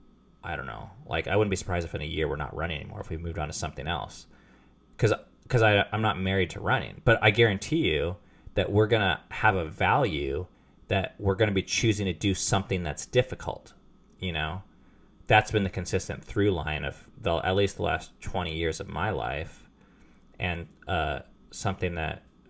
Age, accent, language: 30-49, American, English